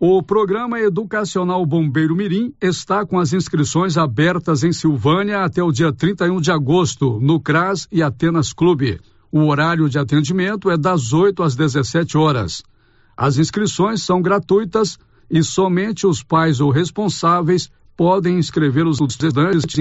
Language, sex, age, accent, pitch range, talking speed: Portuguese, male, 60-79, Brazilian, 150-180 Hz, 140 wpm